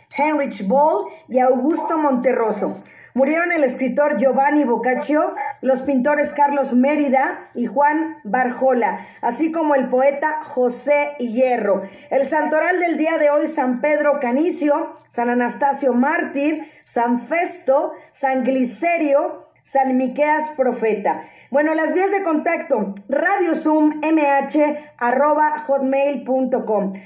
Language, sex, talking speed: Spanish, female, 110 wpm